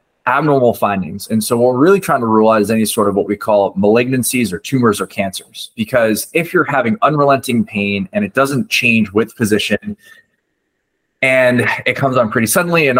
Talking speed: 195 wpm